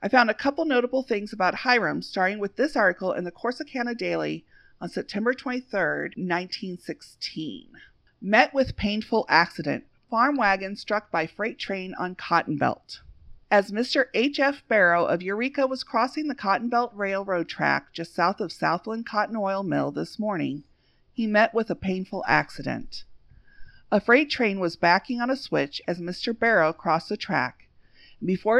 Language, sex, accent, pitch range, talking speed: English, female, American, 180-235 Hz, 160 wpm